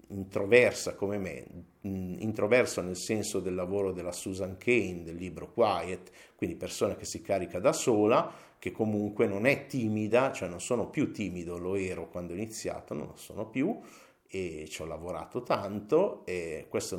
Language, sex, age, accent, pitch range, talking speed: Italian, male, 50-69, native, 95-115 Hz, 165 wpm